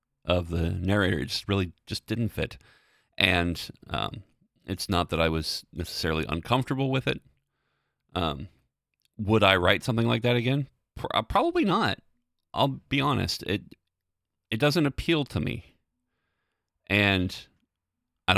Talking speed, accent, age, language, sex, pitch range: 135 wpm, American, 30-49, English, male, 85-110 Hz